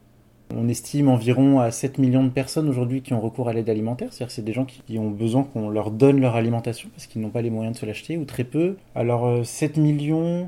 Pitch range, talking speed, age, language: 115-140 Hz, 245 wpm, 20-39, French